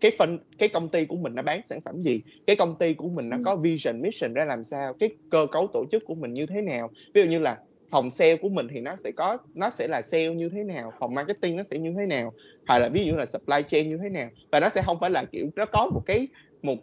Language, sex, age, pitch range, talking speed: English, male, 20-39, 145-195 Hz, 295 wpm